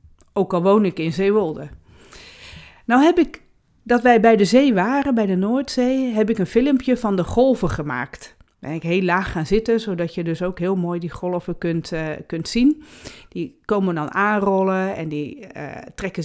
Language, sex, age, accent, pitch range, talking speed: Dutch, female, 40-59, Dutch, 180-230 Hz, 190 wpm